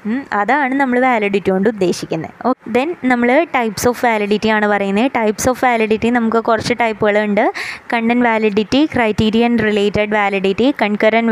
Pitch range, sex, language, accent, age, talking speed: 205-245 Hz, female, English, Indian, 20-39, 140 wpm